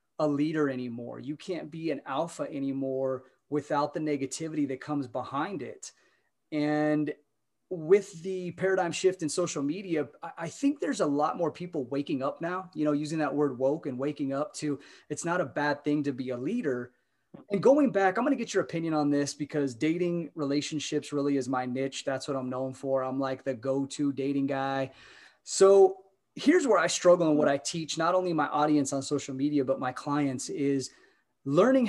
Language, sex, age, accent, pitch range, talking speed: English, male, 30-49, American, 140-180 Hz, 195 wpm